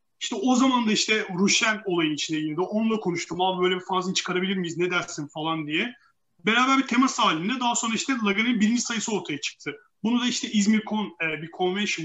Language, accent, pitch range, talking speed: Turkish, native, 180-245 Hz, 205 wpm